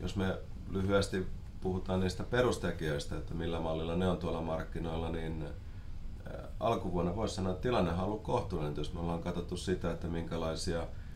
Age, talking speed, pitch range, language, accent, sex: 30-49, 155 wpm, 80-90 Hz, Finnish, native, male